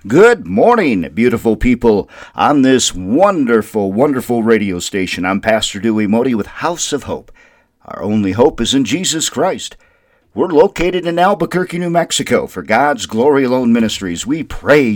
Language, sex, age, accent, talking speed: English, male, 50-69, American, 155 wpm